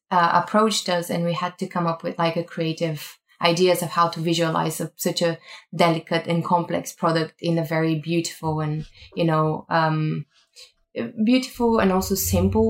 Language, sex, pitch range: English, female, 155-180 Hz